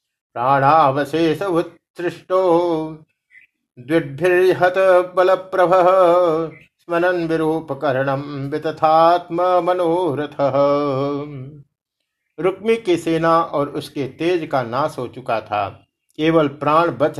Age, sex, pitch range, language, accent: 50-69, male, 145-180 Hz, Hindi, native